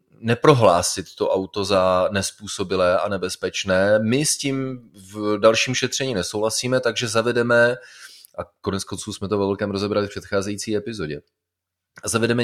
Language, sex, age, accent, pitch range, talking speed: Czech, male, 30-49, native, 95-115 Hz, 135 wpm